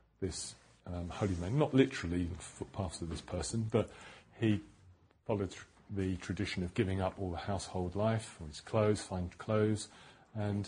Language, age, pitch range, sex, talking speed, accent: English, 40-59, 95-120 Hz, male, 165 wpm, British